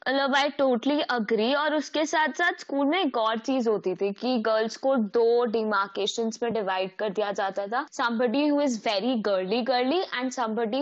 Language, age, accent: English, 20-39, Indian